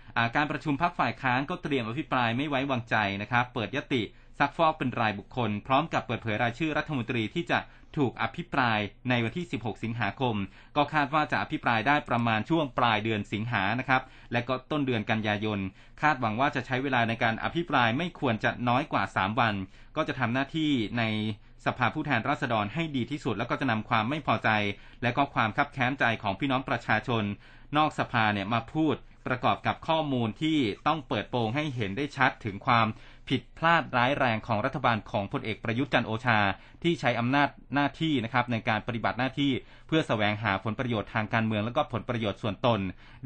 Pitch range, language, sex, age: 110-140 Hz, Thai, male, 20-39